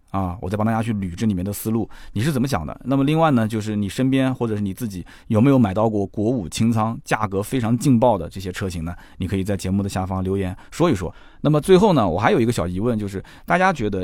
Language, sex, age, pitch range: Chinese, male, 20-39, 95-130 Hz